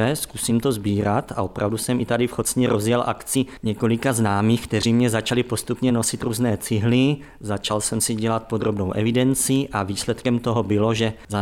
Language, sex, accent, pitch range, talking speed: Czech, male, native, 110-120 Hz, 175 wpm